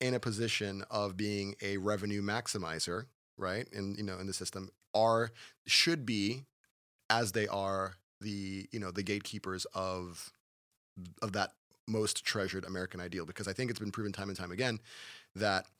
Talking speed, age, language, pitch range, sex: 165 wpm, 30-49, English, 95-110 Hz, male